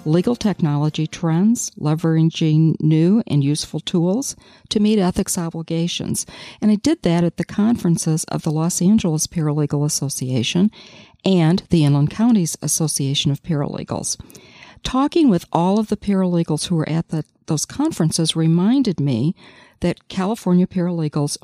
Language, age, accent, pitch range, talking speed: English, 50-69, American, 155-190 Hz, 135 wpm